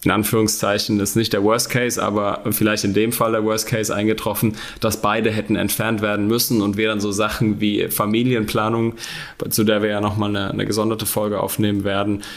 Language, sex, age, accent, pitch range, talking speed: German, male, 10-29, German, 105-125 Hz, 195 wpm